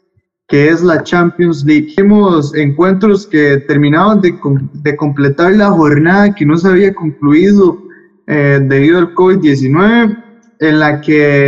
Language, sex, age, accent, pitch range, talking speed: Spanish, male, 20-39, Colombian, 145-185 Hz, 135 wpm